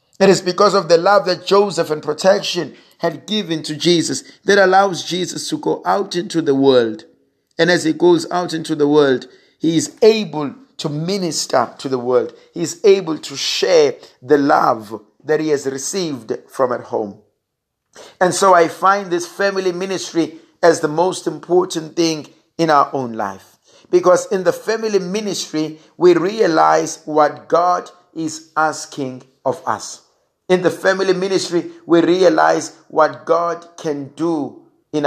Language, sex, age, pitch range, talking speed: English, male, 50-69, 150-195 Hz, 160 wpm